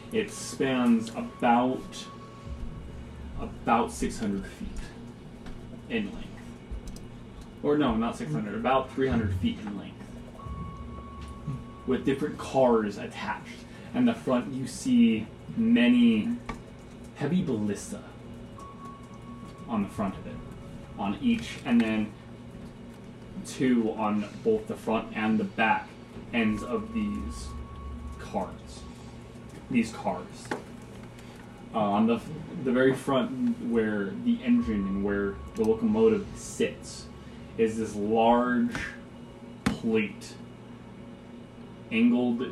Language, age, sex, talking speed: English, 20-39, male, 100 wpm